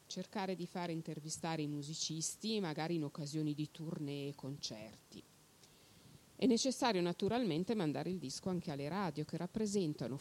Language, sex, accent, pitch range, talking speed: Italian, female, native, 150-205 Hz, 140 wpm